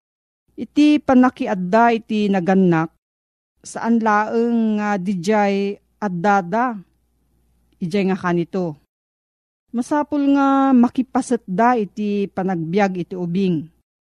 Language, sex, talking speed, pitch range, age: Filipino, female, 90 wpm, 180-235 Hz, 40-59